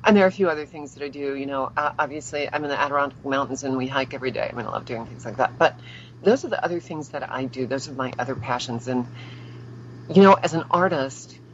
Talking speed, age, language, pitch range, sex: 265 wpm, 50-69, English, 125-155 Hz, female